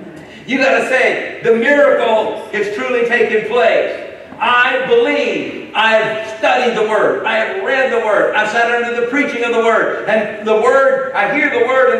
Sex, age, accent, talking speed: male, 50-69, American, 185 wpm